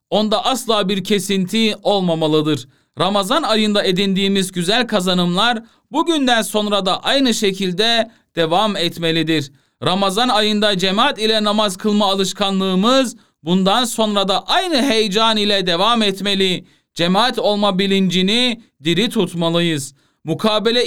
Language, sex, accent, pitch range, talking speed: Turkish, male, native, 185-225 Hz, 110 wpm